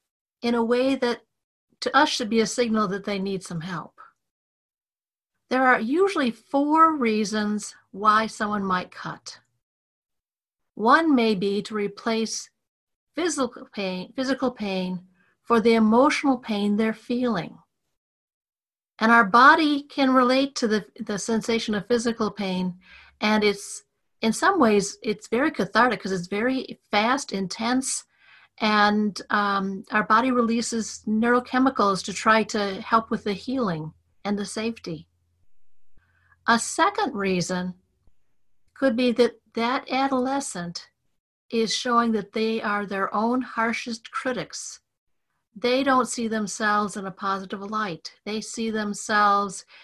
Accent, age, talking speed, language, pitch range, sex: American, 50-69, 130 wpm, English, 200-245 Hz, female